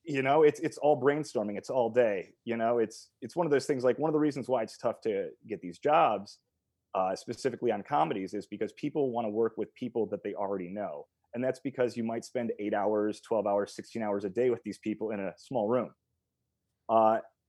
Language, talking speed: English, 230 wpm